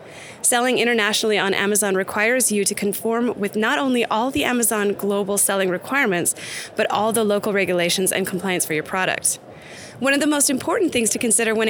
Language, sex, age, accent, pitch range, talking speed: English, female, 20-39, American, 190-240 Hz, 185 wpm